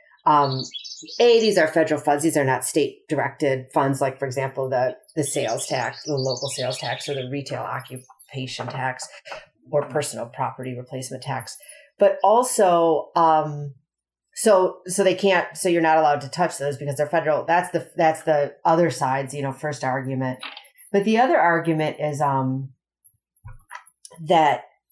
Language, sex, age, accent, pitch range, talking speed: English, female, 40-59, American, 140-180 Hz, 160 wpm